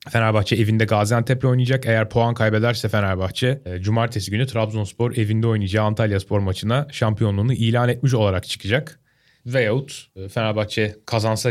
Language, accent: Turkish, native